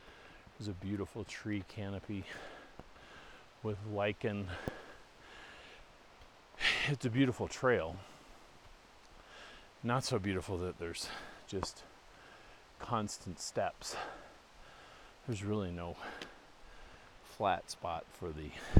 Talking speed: 80 wpm